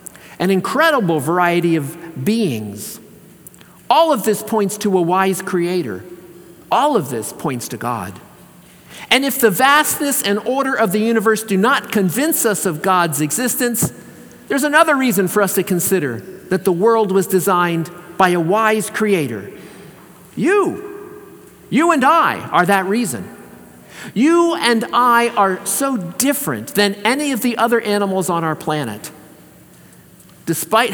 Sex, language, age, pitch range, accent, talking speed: male, English, 50-69, 175-235 Hz, American, 145 wpm